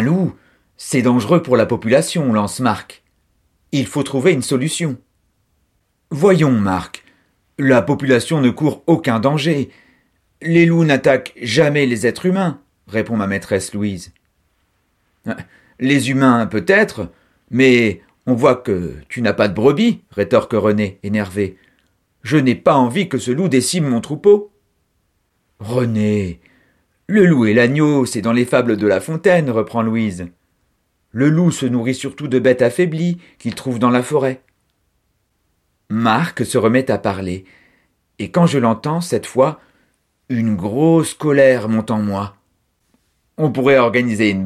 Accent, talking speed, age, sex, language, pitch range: French, 145 wpm, 50-69, male, French, 105-150 Hz